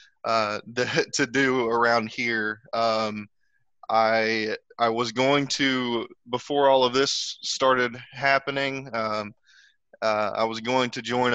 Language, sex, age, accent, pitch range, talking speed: English, male, 20-39, American, 110-125 Hz, 130 wpm